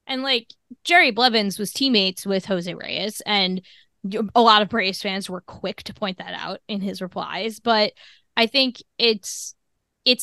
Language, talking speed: English, 170 wpm